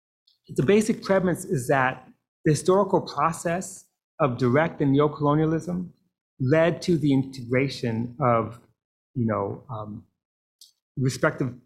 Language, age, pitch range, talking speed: English, 30-49, 125-160 Hz, 110 wpm